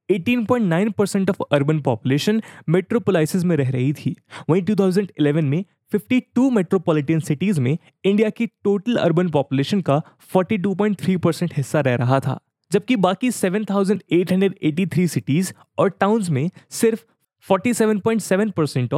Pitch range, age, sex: 145-205 Hz, 20-39, male